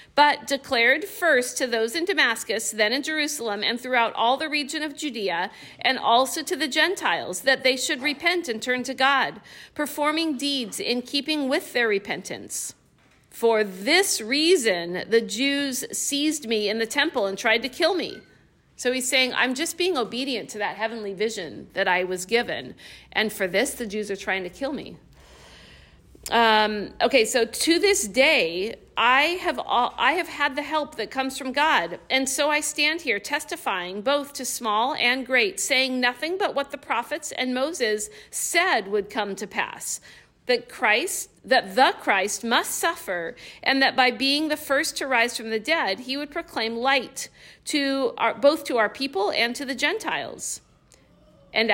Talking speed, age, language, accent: 175 wpm, 50-69, English, American